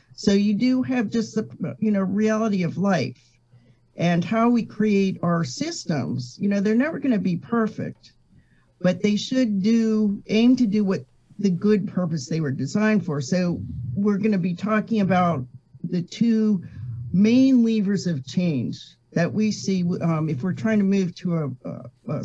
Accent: American